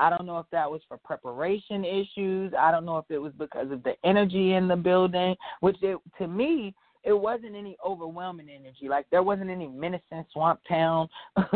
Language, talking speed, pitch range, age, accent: English, 190 wpm, 160-195 Hz, 30-49, American